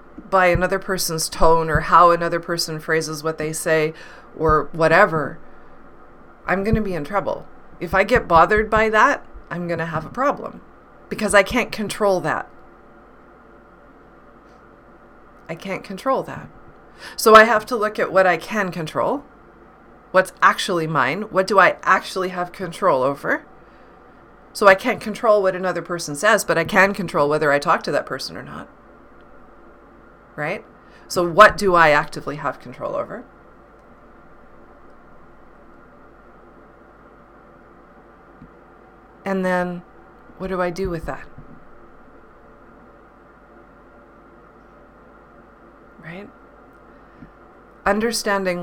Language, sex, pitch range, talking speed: English, female, 165-210 Hz, 125 wpm